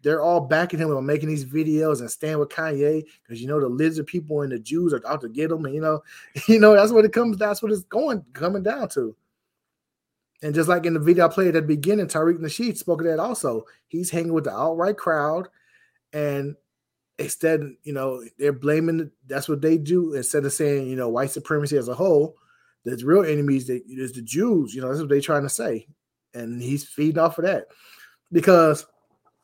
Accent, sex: American, male